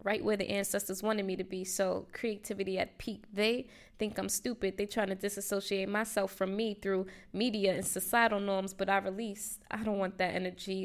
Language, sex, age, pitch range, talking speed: English, female, 20-39, 190-215 Hz, 200 wpm